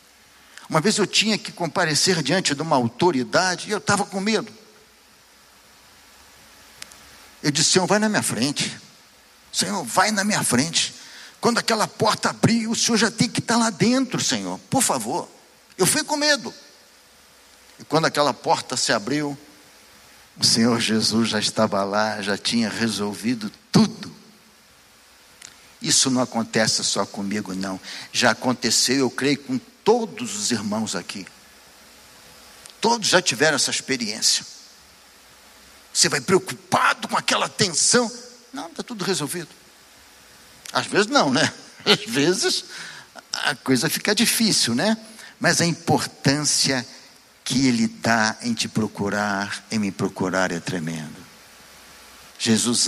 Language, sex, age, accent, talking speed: Portuguese, male, 60-79, Brazilian, 135 wpm